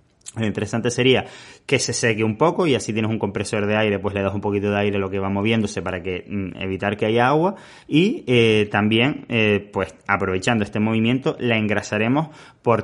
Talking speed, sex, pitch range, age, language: 205 wpm, male, 105-130 Hz, 20-39, Spanish